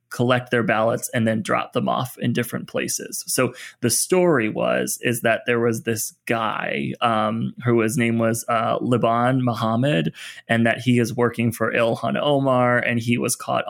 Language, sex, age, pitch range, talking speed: English, male, 20-39, 115-125 Hz, 180 wpm